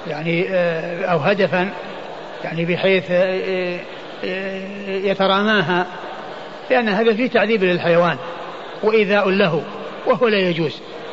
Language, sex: Arabic, male